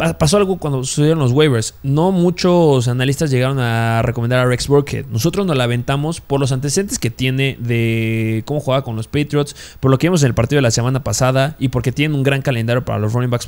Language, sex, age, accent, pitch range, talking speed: Spanish, male, 20-39, Mexican, 130-160 Hz, 225 wpm